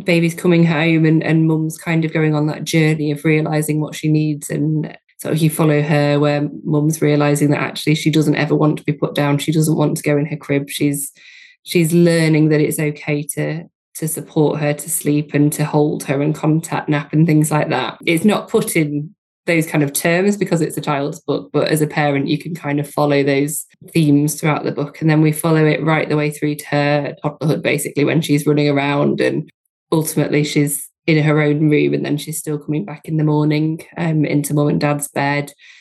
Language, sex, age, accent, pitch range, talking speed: English, female, 20-39, British, 145-160 Hz, 220 wpm